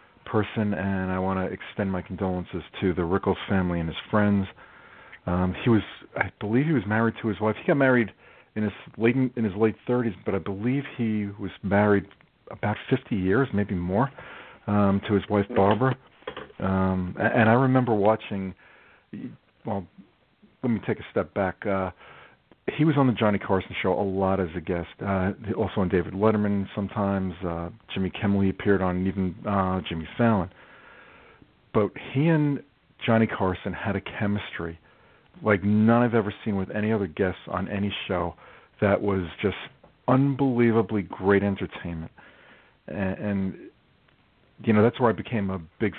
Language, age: English, 40-59